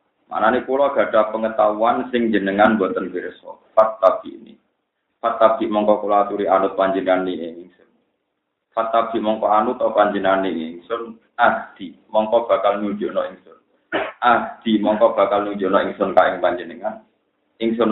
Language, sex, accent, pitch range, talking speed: Indonesian, male, native, 100-120 Hz, 130 wpm